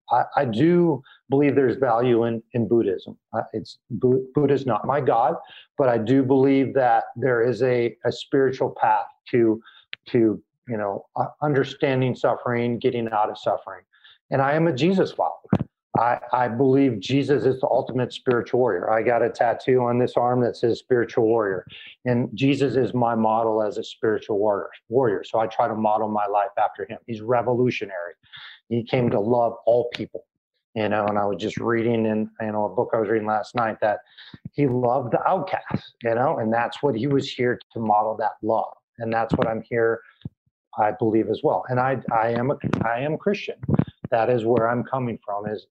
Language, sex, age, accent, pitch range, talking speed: English, male, 50-69, American, 115-140 Hz, 185 wpm